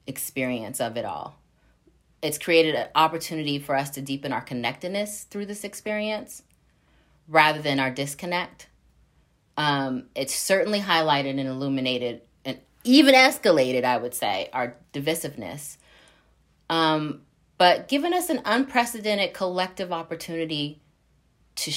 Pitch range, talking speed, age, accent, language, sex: 140-210 Hz, 120 wpm, 30-49, American, English, female